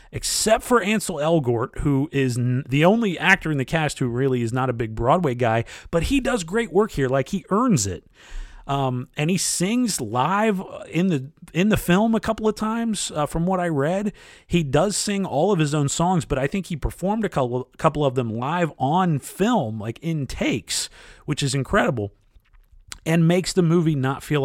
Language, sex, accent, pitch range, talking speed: English, male, American, 115-170 Hz, 200 wpm